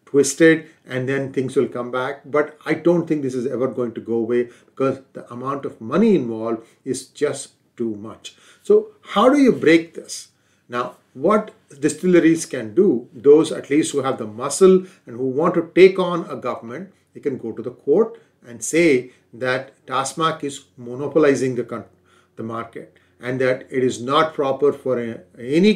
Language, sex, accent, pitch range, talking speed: English, male, Indian, 120-155 Hz, 175 wpm